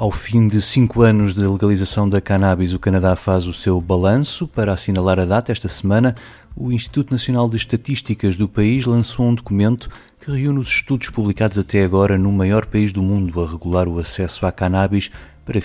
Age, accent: 30-49, Portuguese